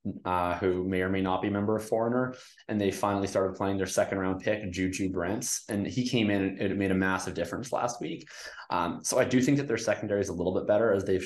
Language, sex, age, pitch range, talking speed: English, male, 20-39, 90-110 Hz, 260 wpm